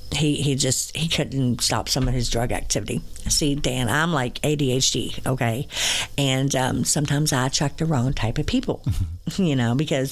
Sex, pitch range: female, 120-150 Hz